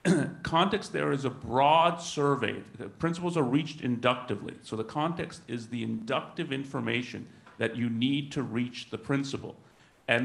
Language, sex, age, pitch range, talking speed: English, male, 40-59, 125-160 Hz, 150 wpm